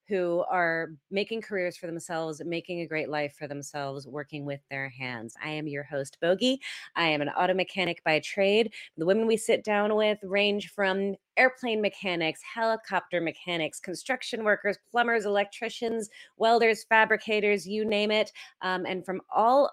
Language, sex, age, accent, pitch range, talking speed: English, female, 30-49, American, 160-215 Hz, 160 wpm